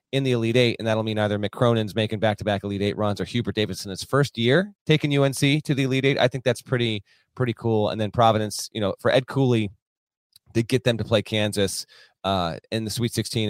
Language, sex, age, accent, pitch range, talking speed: English, male, 30-49, American, 110-150 Hz, 230 wpm